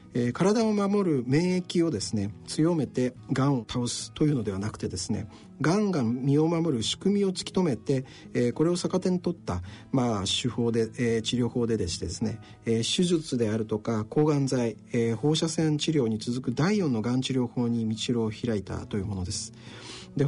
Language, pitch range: Japanese, 110-160 Hz